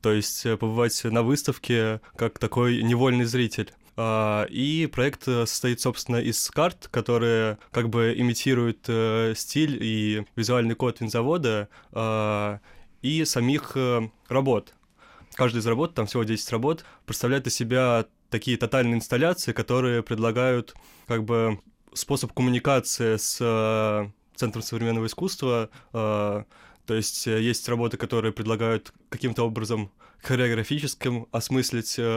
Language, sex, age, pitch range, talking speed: Russian, male, 20-39, 115-125 Hz, 110 wpm